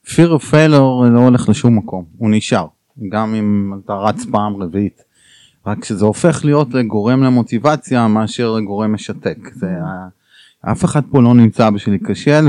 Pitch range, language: 110-135 Hz, Hebrew